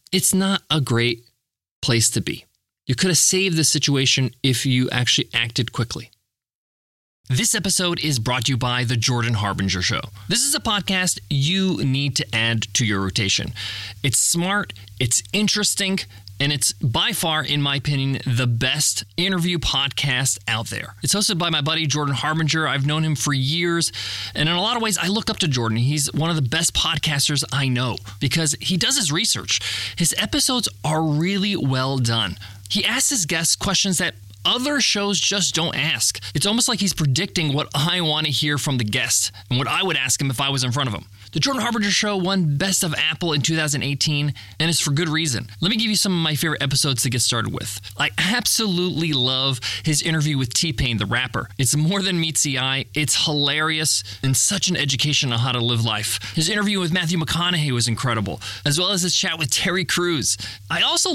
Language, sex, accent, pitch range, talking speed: English, male, American, 120-175 Hz, 205 wpm